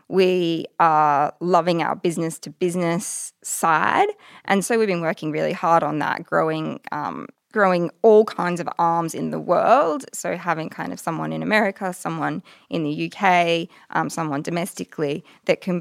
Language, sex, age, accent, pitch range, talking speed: English, female, 20-39, Australian, 165-195 Hz, 155 wpm